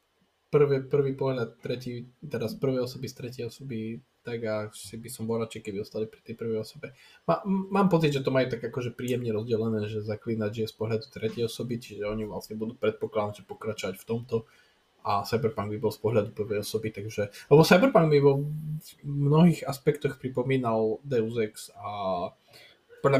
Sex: male